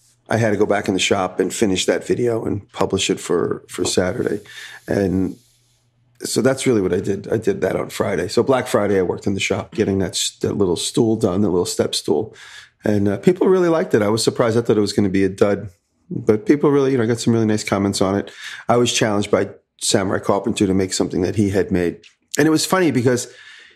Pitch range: 100-130 Hz